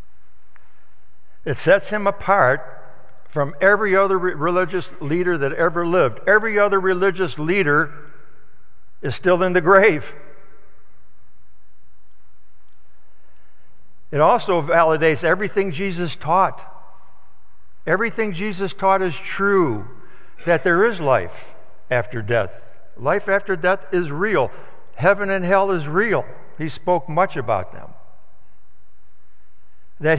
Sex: male